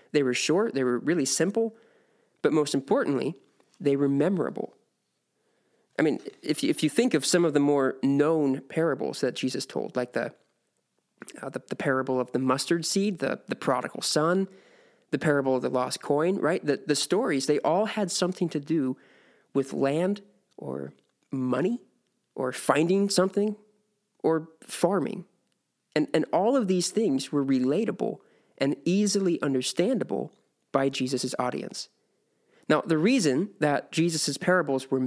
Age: 20-39